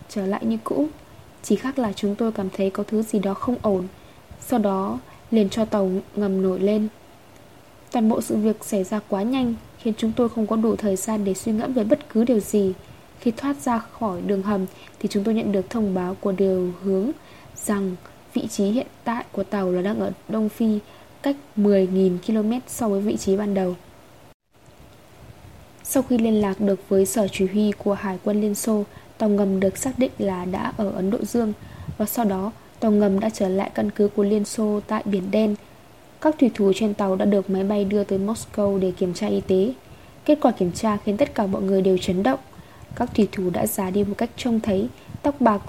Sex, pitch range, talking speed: female, 195-230 Hz, 220 wpm